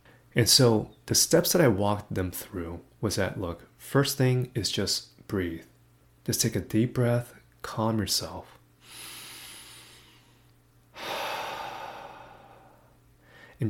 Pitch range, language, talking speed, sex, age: 95-125 Hz, English, 110 wpm, male, 30-49